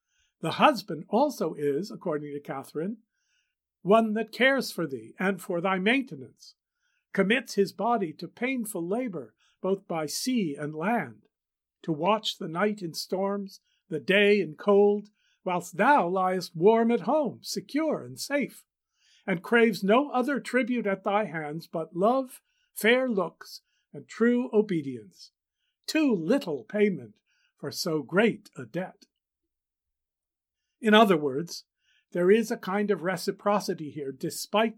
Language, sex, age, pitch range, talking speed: English, male, 50-69, 160-220 Hz, 140 wpm